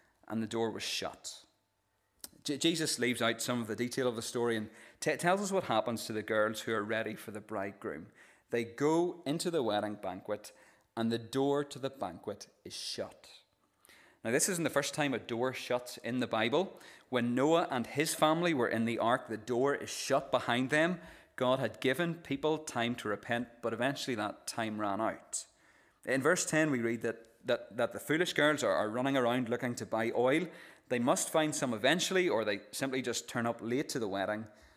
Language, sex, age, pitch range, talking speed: English, male, 30-49, 110-150 Hz, 200 wpm